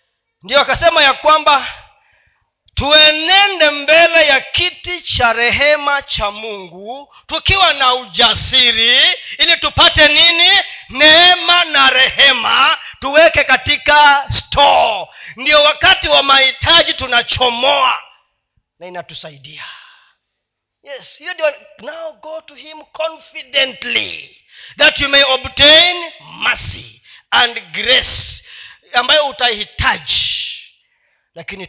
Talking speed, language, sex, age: 90 wpm, Swahili, male, 40-59